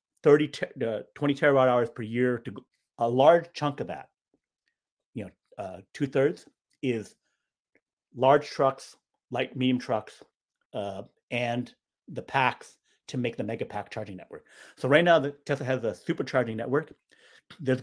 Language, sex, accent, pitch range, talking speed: English, male, American, 110-140 Hz, 155 wpm